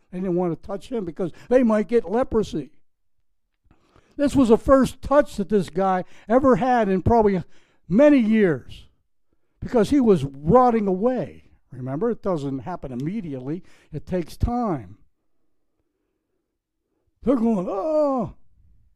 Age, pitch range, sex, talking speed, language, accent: 60-79, 150-230 Hz, male, 130 wpm, English, American